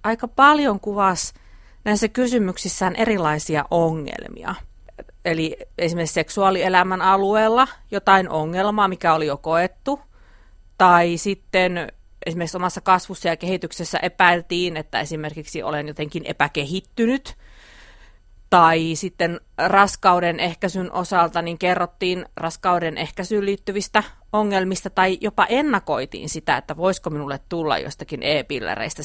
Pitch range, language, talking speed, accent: 155-195 Hz, Finnish, 105 wpm, native